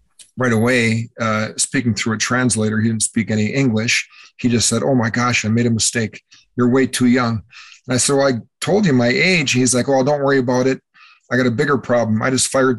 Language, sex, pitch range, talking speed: English, male, 110-130 Hz, 235 wpm